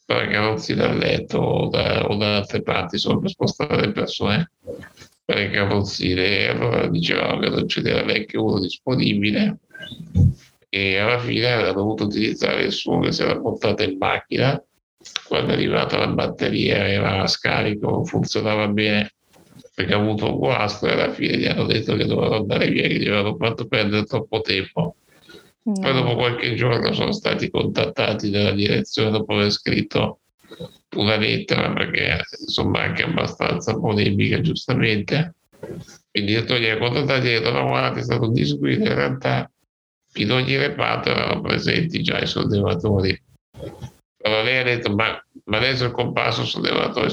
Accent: native